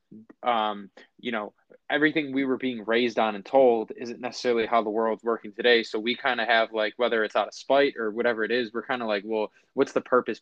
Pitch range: 105-120 Hz